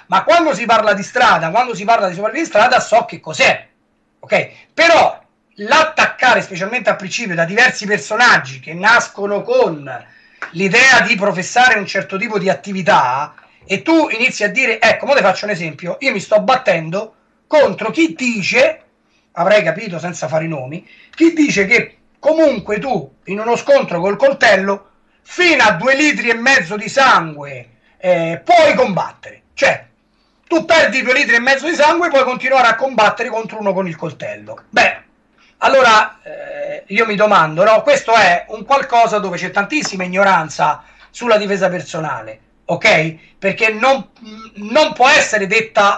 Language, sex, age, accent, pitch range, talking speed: Italian, male, 30-49, native, 190-270 Hz, 165 wpm